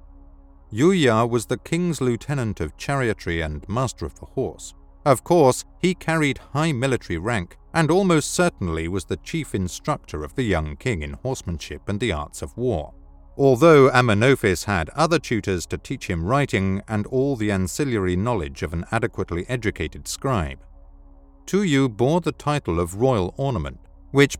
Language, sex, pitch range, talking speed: English, male, 85-135 Hz, 155 wpm